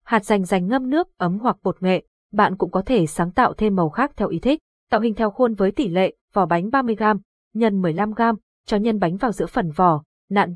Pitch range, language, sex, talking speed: 185-240 Hz, Vietnamese, female, 235 wpm